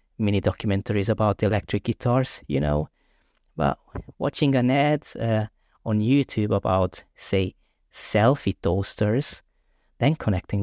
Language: English